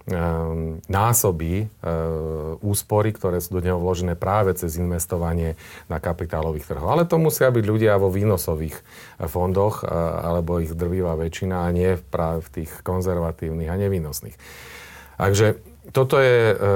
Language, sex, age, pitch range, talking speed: Slovak, male, 40-59, 80-95 Hz, 120 wpm